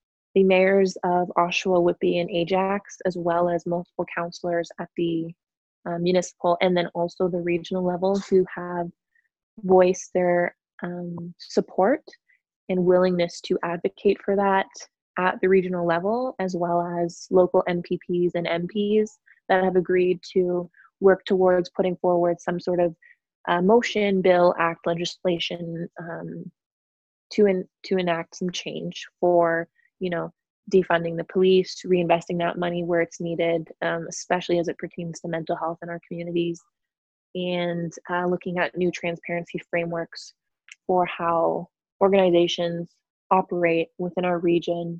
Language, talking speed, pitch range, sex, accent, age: English, 140 wpm, 170-185 Hz, female, American, 20-39